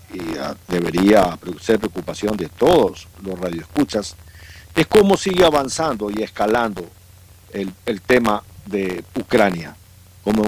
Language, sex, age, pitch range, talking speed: Spanish, male, 50-69, 95-125 Hz, 110 wpm